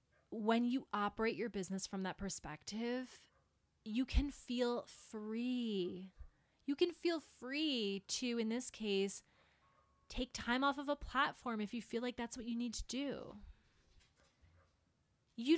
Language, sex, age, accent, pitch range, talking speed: English, female, 20-39, American, 195-275 Hz, 145 wpm